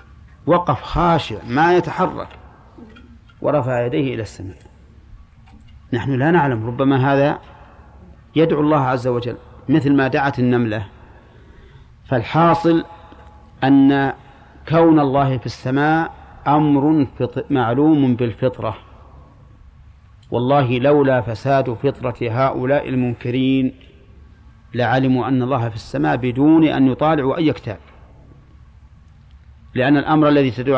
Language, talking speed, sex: Arabic, 100 wpm, male